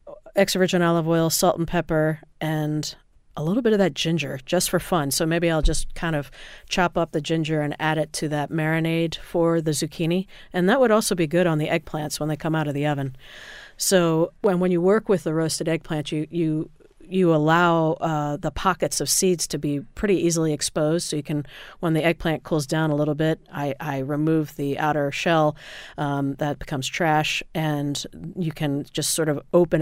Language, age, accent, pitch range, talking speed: English, 40-59, American, 145-165 Hz, 205 wpm